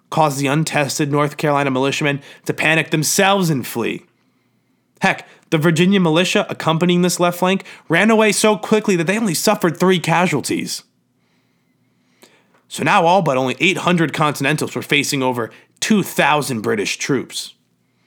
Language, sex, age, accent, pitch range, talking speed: English, male, 30-49, American, 125-165 Hz, 140 wpm